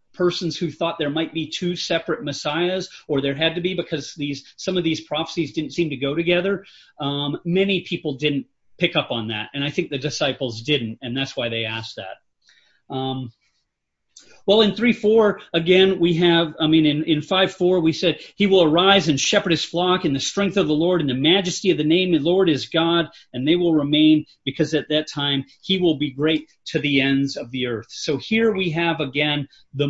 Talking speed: 215 wpm